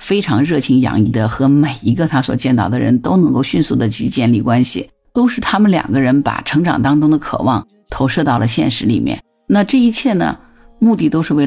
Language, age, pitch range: Chinese, 50-69, 140-220 Hz